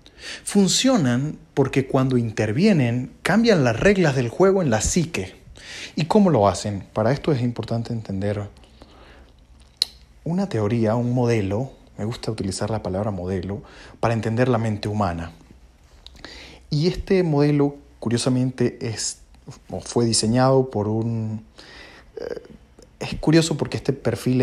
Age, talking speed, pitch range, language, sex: 30-49, 120 wpm, 105-140 Hz, Spanish, male